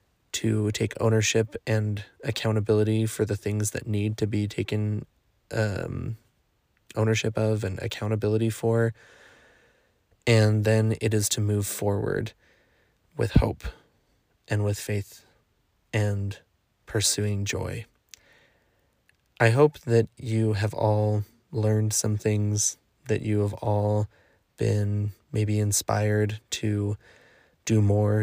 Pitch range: 105-110 Hz